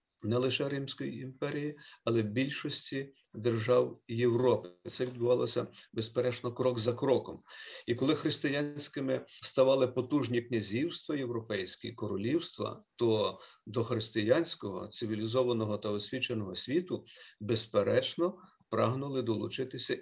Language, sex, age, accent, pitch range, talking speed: Ukrainian, male, 50-69, native, 110-140 Hz, 100 wpm